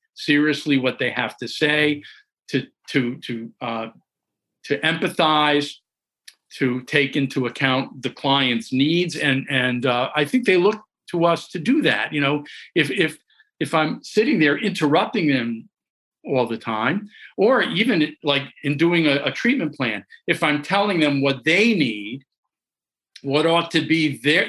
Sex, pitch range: male, 135-170 Hz